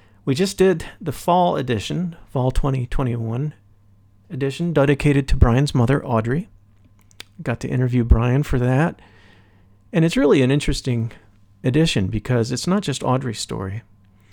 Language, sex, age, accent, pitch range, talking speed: English, male, 50-69, American, 100-140 Hz, 135 wpm